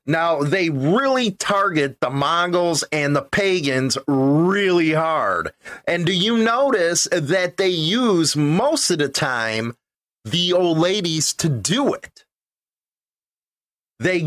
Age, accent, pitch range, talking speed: 30-49, American, 150-185 Hz, 120 wpm